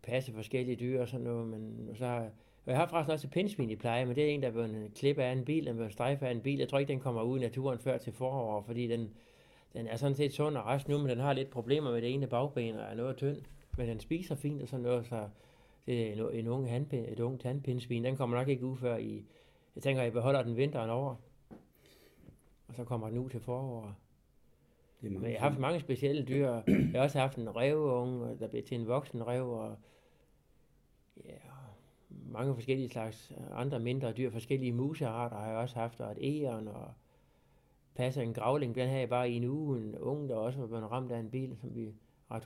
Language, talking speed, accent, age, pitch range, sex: Danish, 230 wpm, native, 60-79, 115-135 Hz, male